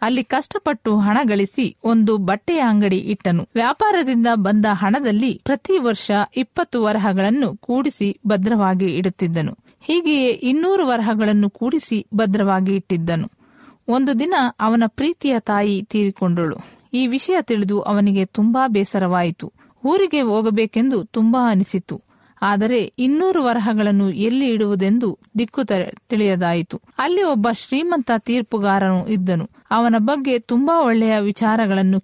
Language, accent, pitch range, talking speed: Kannada, native, 200-250 Hz, 105 wpm